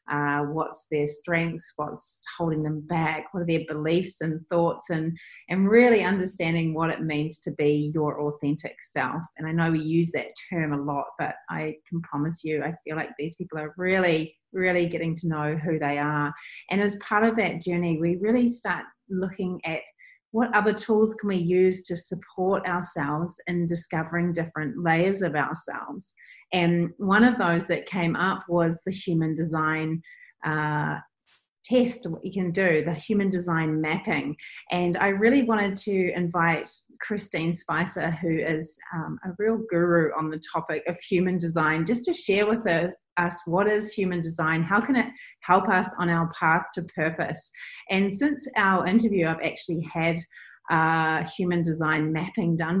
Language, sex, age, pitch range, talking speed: English, female, 30-49, 160-190 Hz, 175 wpm